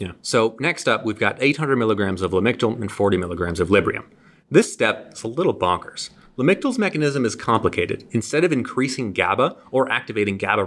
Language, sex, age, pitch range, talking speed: English, male, 30-49, 110-155 Hz, 180 wpm